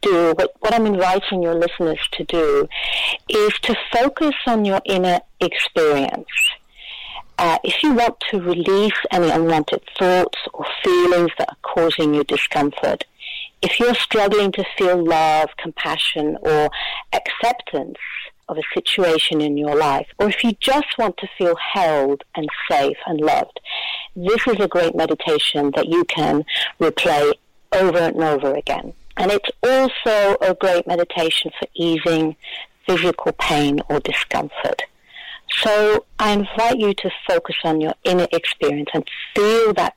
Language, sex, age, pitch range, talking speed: English, female, 50-69, 160-220 Hz, 145 wpm